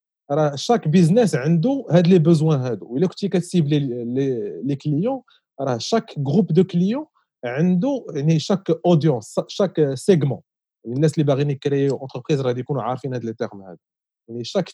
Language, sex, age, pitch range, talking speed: Arabic, male, 40-59, 135-175 Hz, 165 wpm